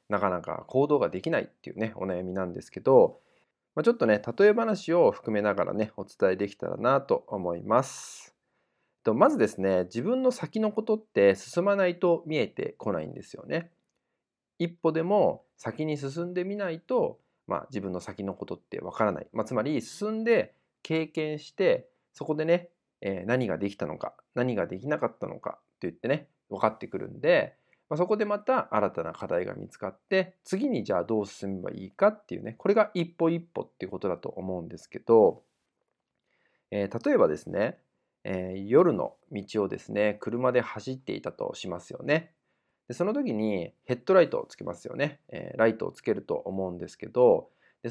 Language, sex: Japanese, male